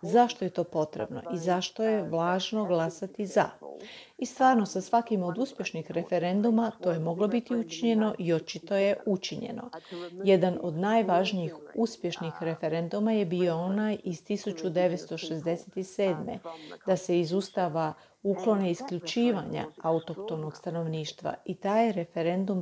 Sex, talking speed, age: female, 120 wpm, 40-59